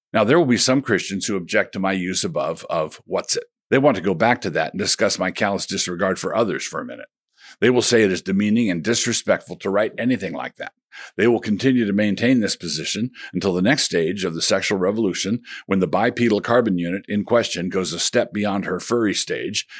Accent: American